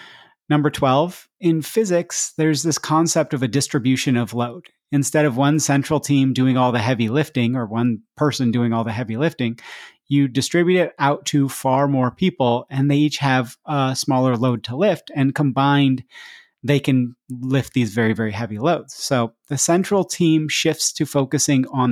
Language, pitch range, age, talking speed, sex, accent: English, 125-150 Hz, 30-49, 180 wpm, male, American